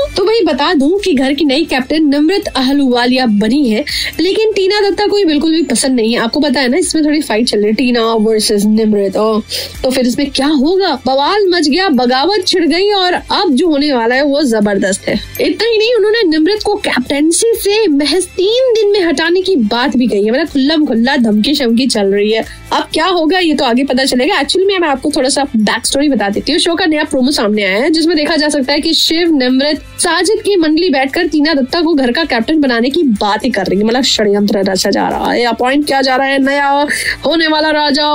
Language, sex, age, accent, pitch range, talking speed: Hindi, female, 20-39, native, 255-360 Hz, 220 wpm